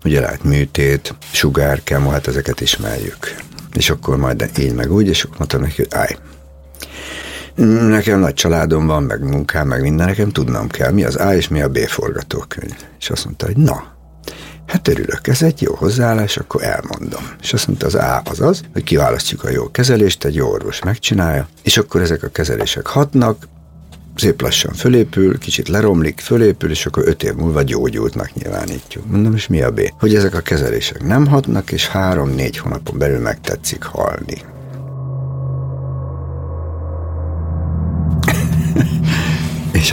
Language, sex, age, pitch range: Hungarian, male, 60-79, 75-110 Hz